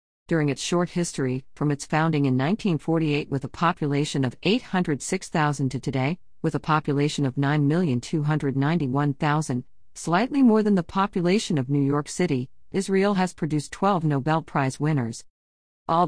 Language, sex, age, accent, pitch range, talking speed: English, female, 50-69, American, 140-185 Hz, 140 wpm